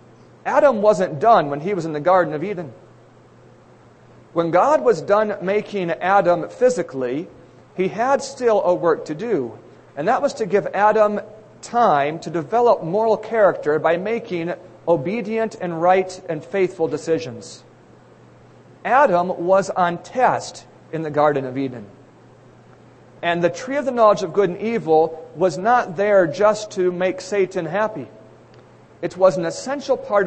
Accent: American